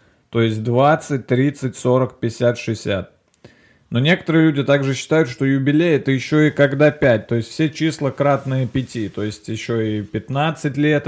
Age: 20-39